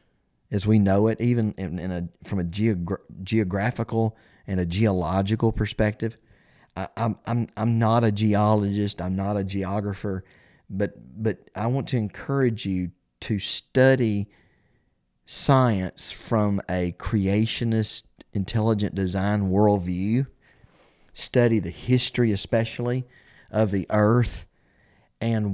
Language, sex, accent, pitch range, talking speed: English, male, American, 95-115 Hz, 120 wpm